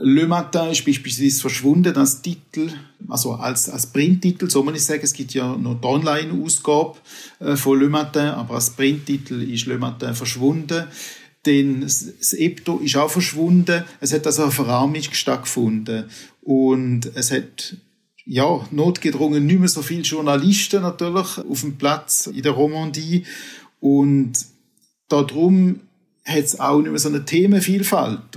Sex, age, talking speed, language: male, 50-69, 150 wpm, German